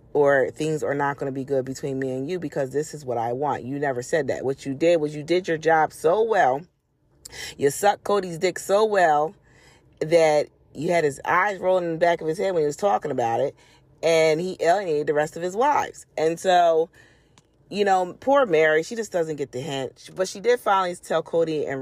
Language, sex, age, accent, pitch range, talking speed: English, female, 30-49, American, 135-175 Hz, 230 wpm